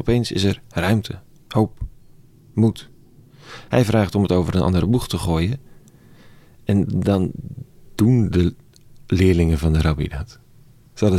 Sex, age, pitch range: male, 40-59, 90-115 Hz